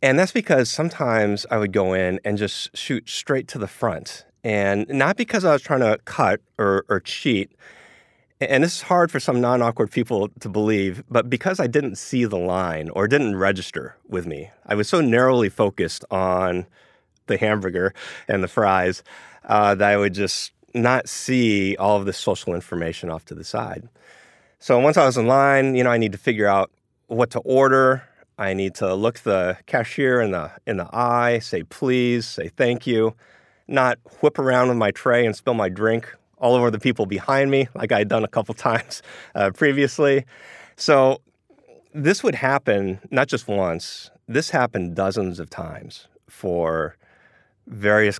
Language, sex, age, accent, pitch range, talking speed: English, male, 30-49, American, 95-130 Hz, 180 wpm